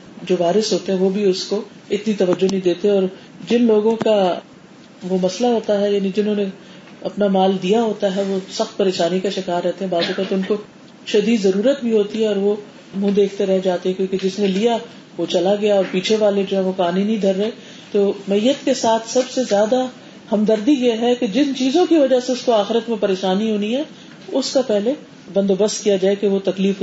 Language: Urdu